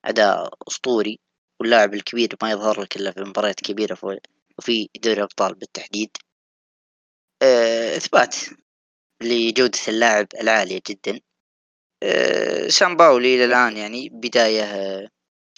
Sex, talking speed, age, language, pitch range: female, 100 wpm, 20-39, Arabic, 105-135 Hz